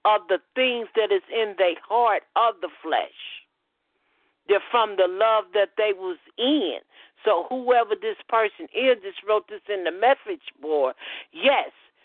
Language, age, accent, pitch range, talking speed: English, 50-69, American, 225-290 Hz, 160 wpm